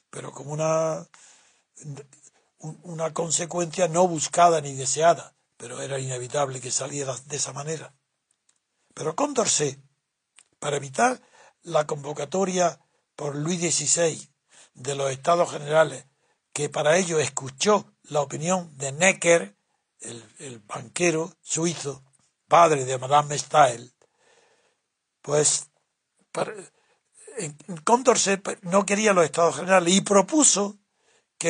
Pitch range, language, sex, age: 145-190 Hz, Spanish, male, 60-79